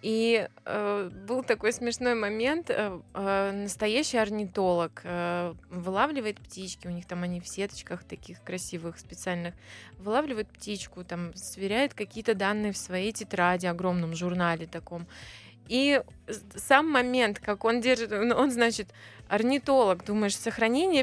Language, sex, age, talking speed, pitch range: Russian, female, 20-39, 130 wpm, 190-255 Hz